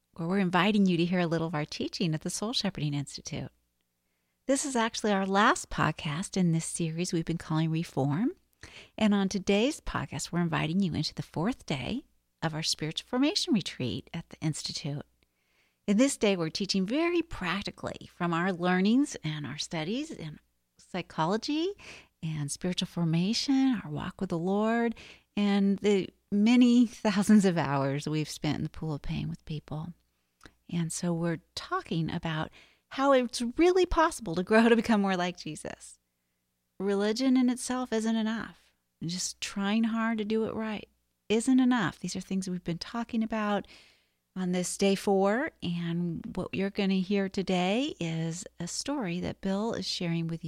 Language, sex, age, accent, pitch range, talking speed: English, female, 50-69, American, 165-225 Hz, 170 wpm